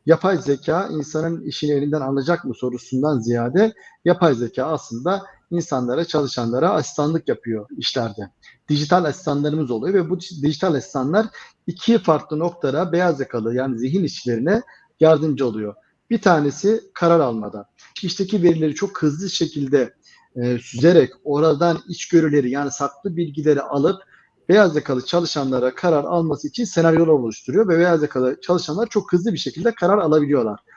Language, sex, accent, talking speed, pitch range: Turkish, male, native, 135 wpm, 135-185 Hz